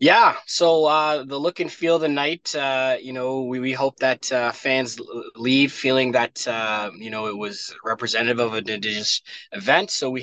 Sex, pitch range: male, 115-135 Hz